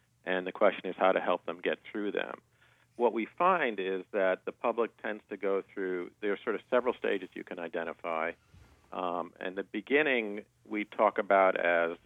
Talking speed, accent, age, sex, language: 195 wpm, American, 50-69, male, English